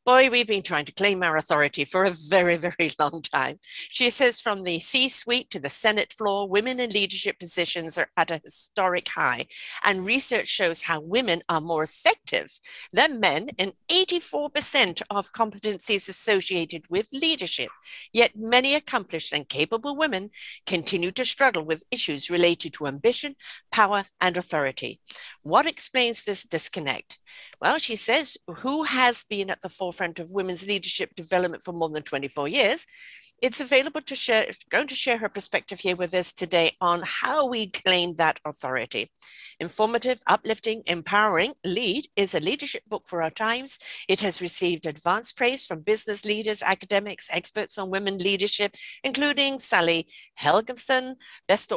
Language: English